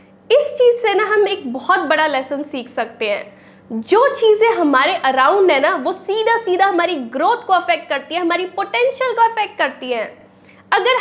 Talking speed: 185 wpm